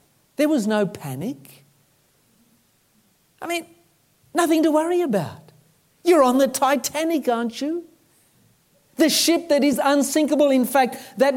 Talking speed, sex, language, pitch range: 125 wpm, male, English, 175-255 Hz